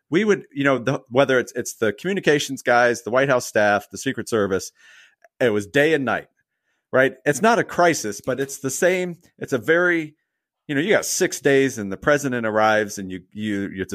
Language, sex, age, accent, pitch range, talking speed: English, male, 40-59, American, 105-135 Hz, 210 wpm